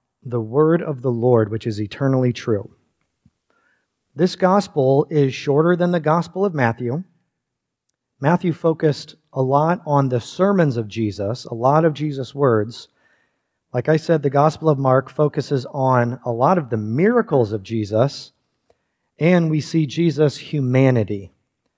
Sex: male